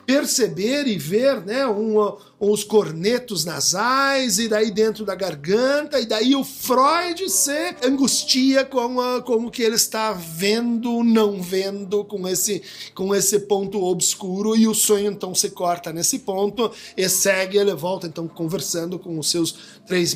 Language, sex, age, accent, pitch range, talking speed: Portuguese, male, 50-69, Brazilian, 190-240 Hz, 155 wpm